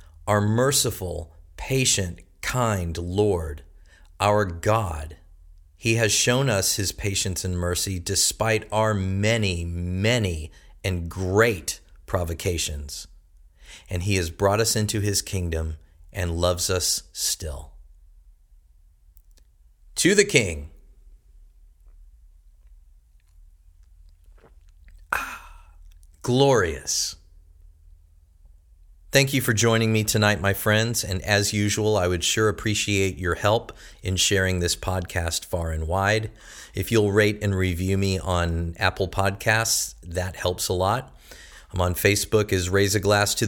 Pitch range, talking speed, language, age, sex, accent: 80-110 Hz, 115 wpm, English, 40-59, male, American